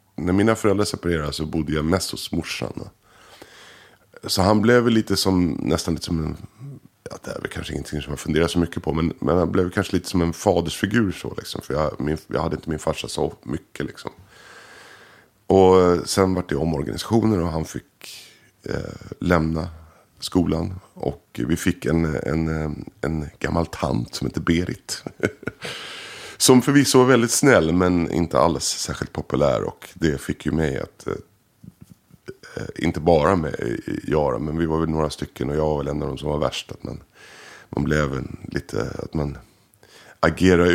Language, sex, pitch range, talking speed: English, male, 75-95 Hz, 180 wpm